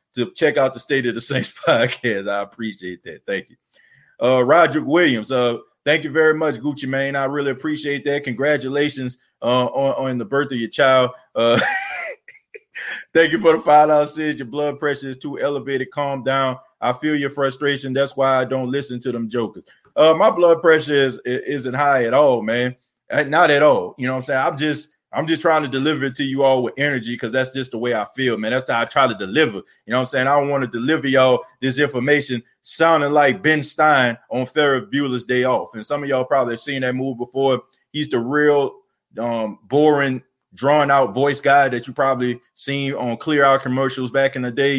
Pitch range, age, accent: 125-150 Hz, 20-39, American